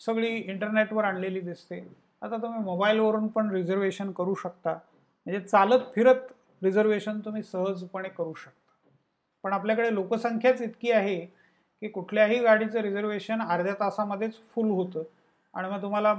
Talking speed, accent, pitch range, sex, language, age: 130 wpm, native, 185-225 Hz, male, Marathi, 40-59